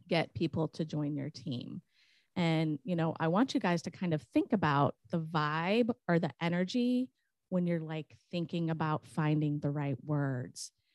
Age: 30-49